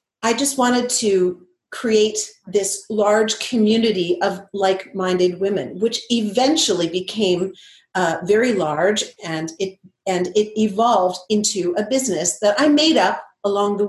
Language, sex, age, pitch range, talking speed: English, female, 40-59, 190-245 Hz, 135 wpm